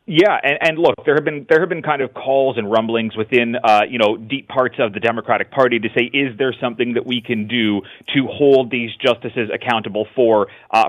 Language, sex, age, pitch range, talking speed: English, male, 30-49, 115-135 Hz, 225 wpm